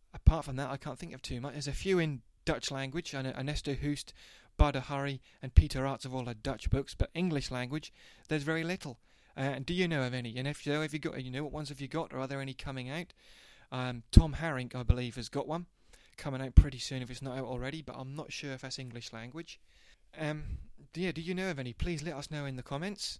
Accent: British